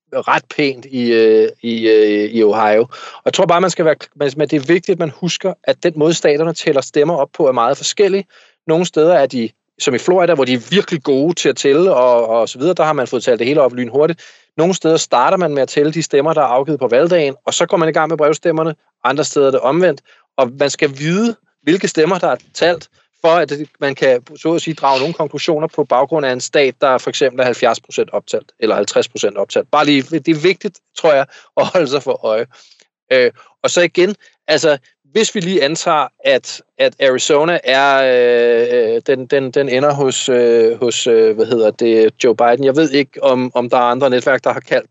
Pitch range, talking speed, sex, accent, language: 130-180 Hz, 225 wpm, male, Danish, English